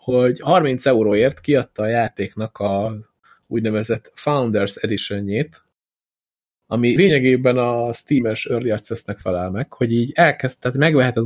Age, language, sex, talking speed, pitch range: 20-39, Hungarian, male, 115 wpm, 110-135 Hz